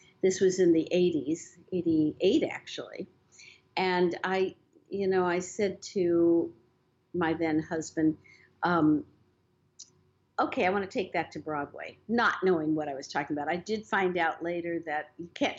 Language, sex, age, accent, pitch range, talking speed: English, female, 50-69, American, 170-210 Hz, 160 wpm